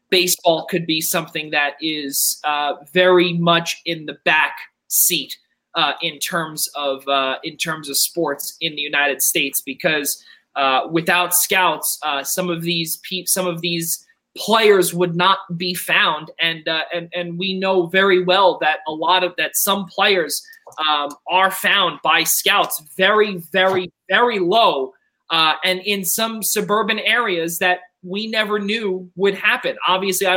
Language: English